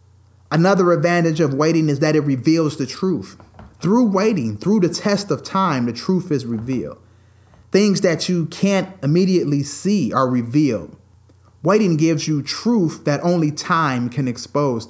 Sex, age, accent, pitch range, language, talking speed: male, 30-49, American, 115-175 Hz, English, 155 wpm